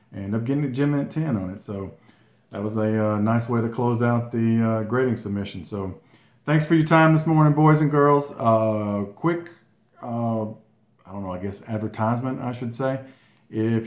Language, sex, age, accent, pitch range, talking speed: English, male, 40-59, American, 110-135 Hz, 195 wpm